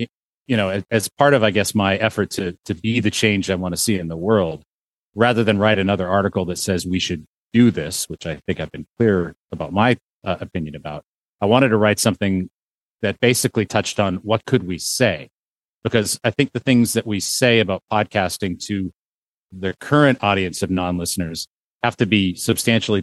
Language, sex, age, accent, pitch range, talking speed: English, male, 40-59, American, 90-115 Hz, 200 wpm